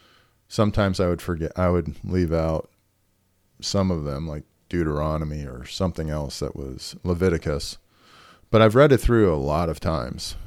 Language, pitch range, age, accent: English, 85-110 Hz, 40-59, American